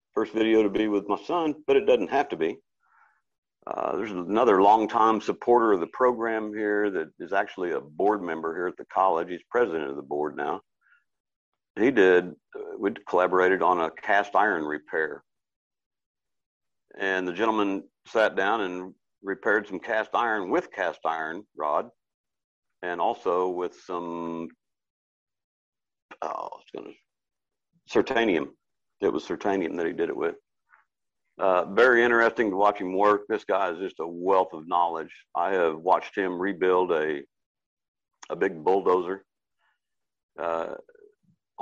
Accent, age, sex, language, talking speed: American, 60-79, male, English, 145 wpm